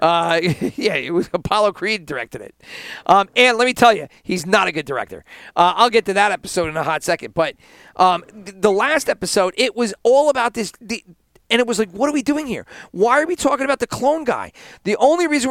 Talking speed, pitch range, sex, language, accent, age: 235 wpm, 175-240 Hz, male, English, American, 40-59